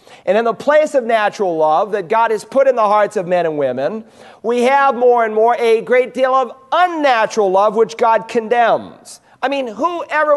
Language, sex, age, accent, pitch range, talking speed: English, male, 40-59, American, 230-290 Hz, 205 wpm